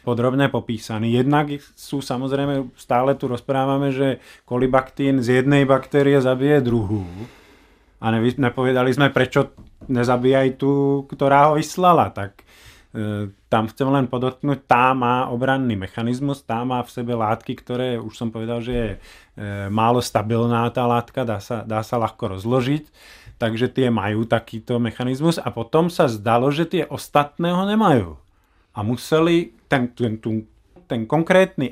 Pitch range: 120-150 Hz